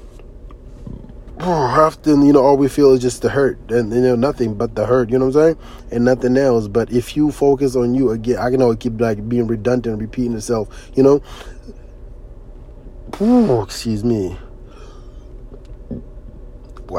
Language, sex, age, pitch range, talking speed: English, male, 20-39, 120-135 Hz, 175 wpm